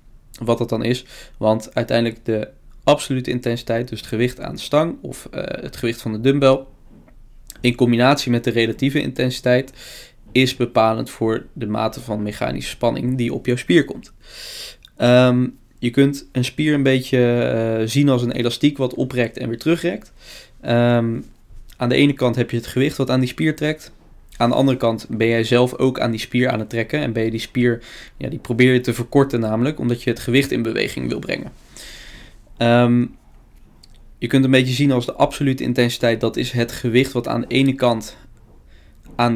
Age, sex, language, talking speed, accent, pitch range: 20-39, male, Dutch, 185 wpm, Dutch, 115-130 Hz